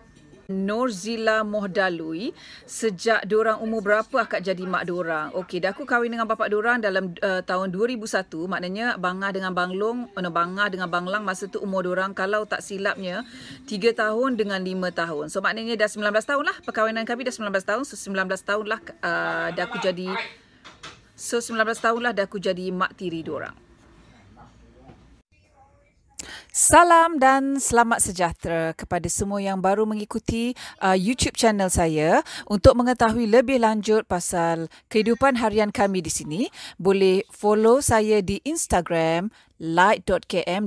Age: 30-49